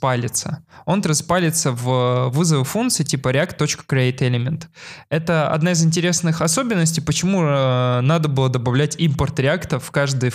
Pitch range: 135-180 Hz